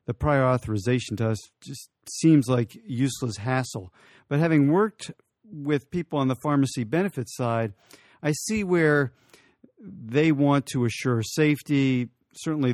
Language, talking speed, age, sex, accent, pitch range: English, 135 wpm, 50-69, male, American, 120-140 Hz